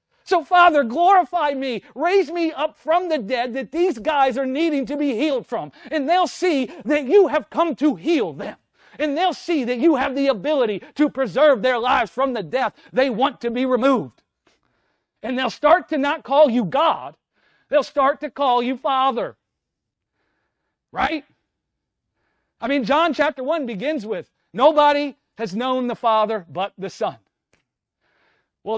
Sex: male